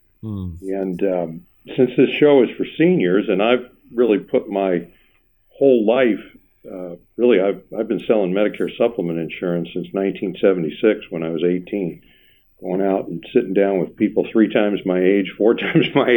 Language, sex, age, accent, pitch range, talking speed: English, male, 50-69, American, 90-115 Hz, 165 wpm